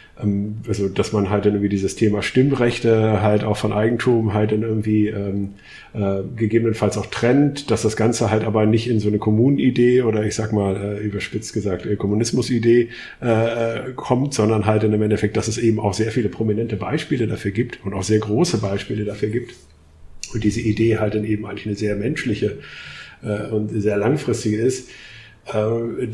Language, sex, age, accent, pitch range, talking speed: German, male, 50-69, German, 105-110 Hz, 185 wpm